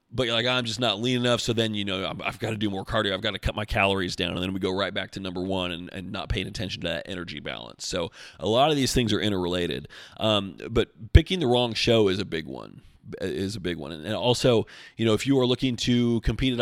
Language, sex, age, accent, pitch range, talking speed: English, male, 30-49, American, 100-130 Hz, 275 wpm